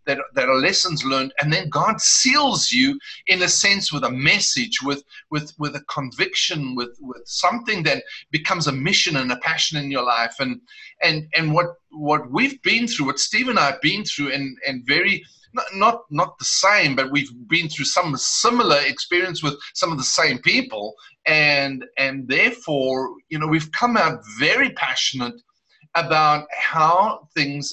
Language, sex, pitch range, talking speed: English, male, 145-190 Hz, 180 wpm